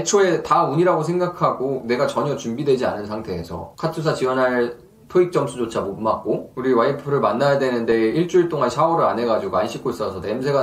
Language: Korean